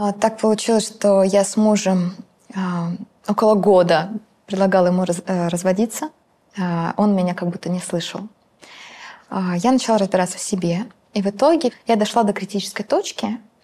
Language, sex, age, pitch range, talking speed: Russian, female, 20-39, 185-220 Hz, 155 wpm